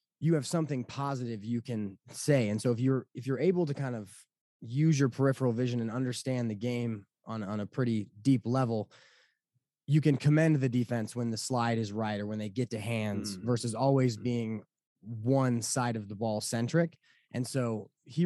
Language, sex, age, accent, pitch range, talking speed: English, male, 20-39, American, 110-130 Hz, 195 wpm